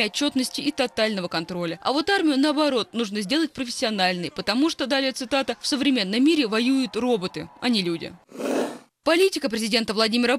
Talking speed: 150 wpm